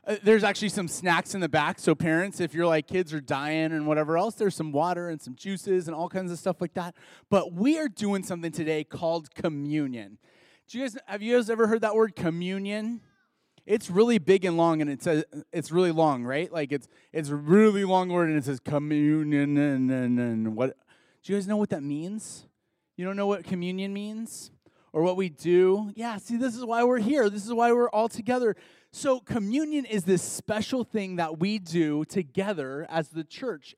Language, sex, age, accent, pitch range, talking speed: English, male, 30-49, American, 165-215 Hz, 210 wpm